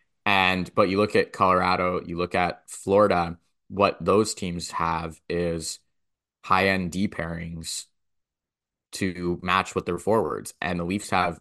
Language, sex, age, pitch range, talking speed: English, male, 20-39, 85-100 Hz, 145 wpm